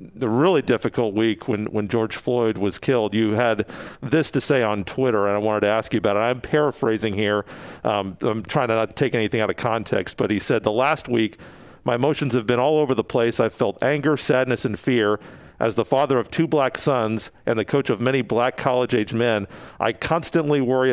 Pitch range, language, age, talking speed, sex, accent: 110-140 Hz, English, 50-69, 220 wpm, male, American